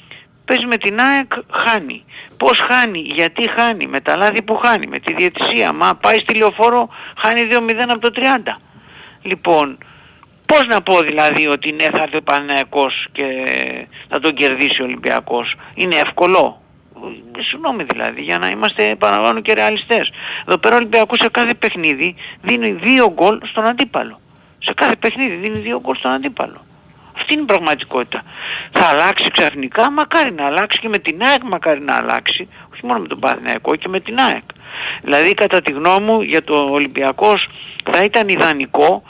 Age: 50-69